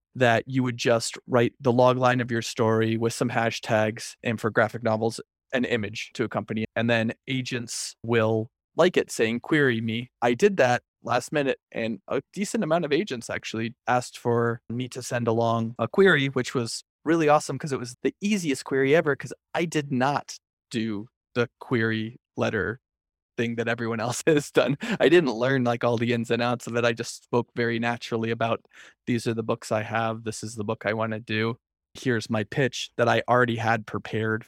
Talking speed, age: 200 wpm, 20-39